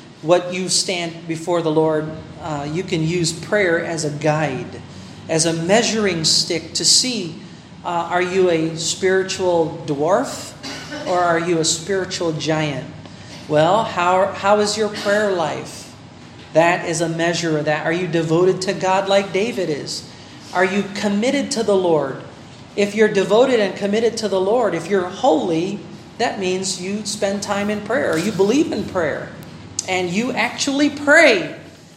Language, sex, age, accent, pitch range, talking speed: Filipino, male, 40-59, American, 170-225 Hz, 160 wpm